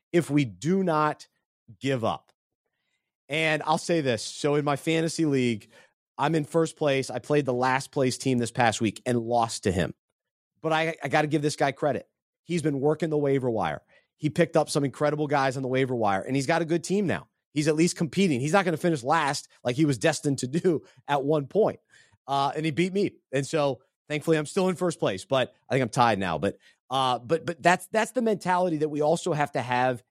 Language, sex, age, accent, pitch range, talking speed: English, male, 30-49, American, 135-175 Hz, 230 wpm